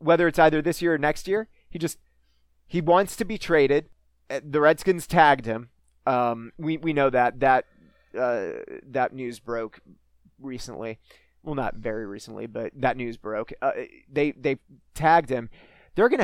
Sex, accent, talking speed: male, American, 165 wpm